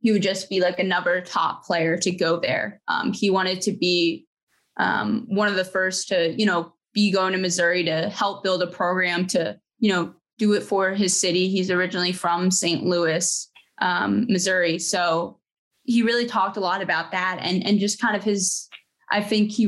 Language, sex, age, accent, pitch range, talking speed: English, female, 20-39, American, 175-205 Hz, 200 wpm